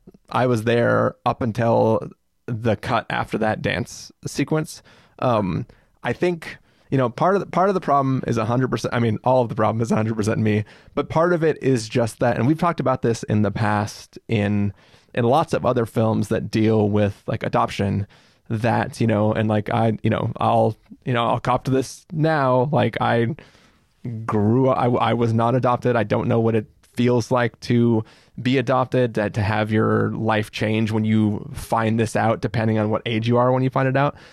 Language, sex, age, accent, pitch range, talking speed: English, male, 20-39, American, 110-125 Hz, 205 wpm